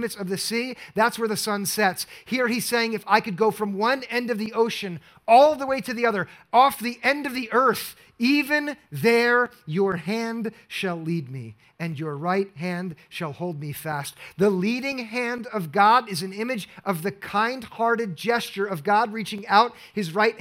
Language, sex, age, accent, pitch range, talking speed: English, male, 40-59, American, 165-215 Hz, 195 wpm